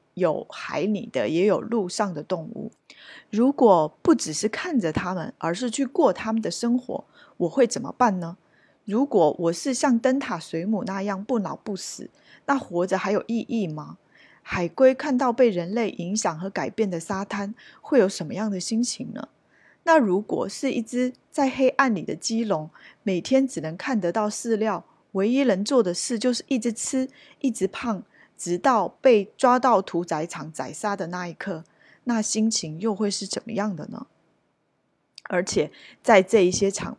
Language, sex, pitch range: Chinese, female, 180-245 Hz